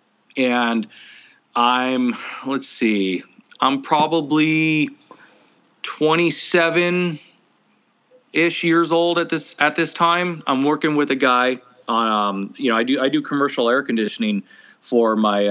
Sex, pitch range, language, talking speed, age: male, 115-185 Hz, English, 125 wpm, 30-49